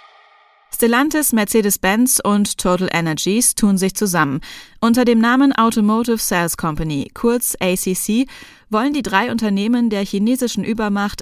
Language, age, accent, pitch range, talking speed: German, 20-39, German, 180-230 Hz, 125 wpm